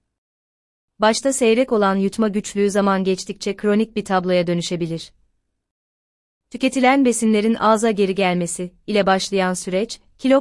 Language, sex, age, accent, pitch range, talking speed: Turkish, female, 30-49, native, 170-215 Hz, 115 wpm